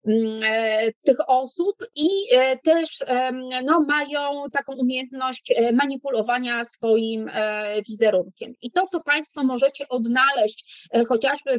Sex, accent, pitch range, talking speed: female, native, 220-275 Hz, 95 wpm